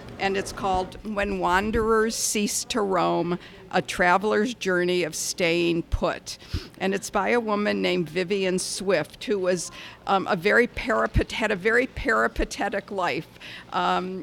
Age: 50-69